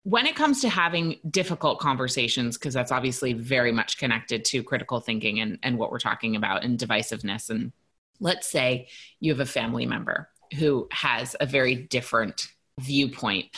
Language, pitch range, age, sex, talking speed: English, 120-170 Hz, 30-49, female, 170 wpm